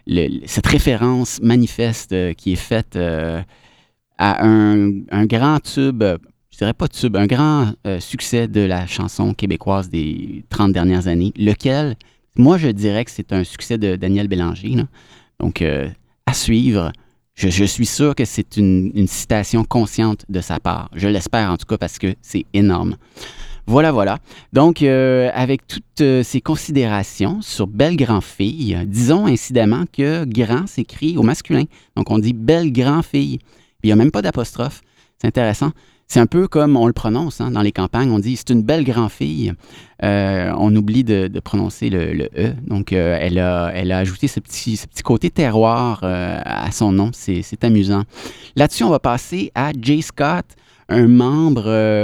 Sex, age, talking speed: male, 30-49, 160 wpm